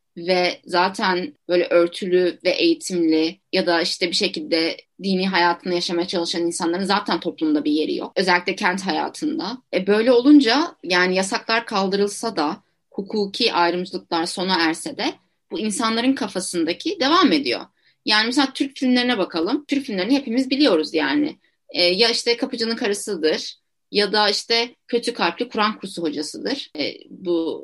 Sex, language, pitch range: female, Turkish, 180-270 Hz